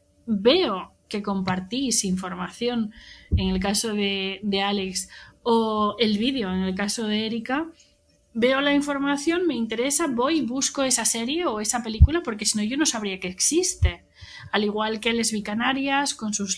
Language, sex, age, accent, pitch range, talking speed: Spanish, female, 20-39, Spanish, 200-255 Hz, 165 wpm